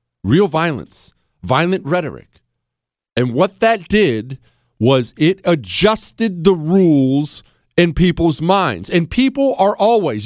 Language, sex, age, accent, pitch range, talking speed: English, male, 40-59, American, 120-170 Hz, 115 wpm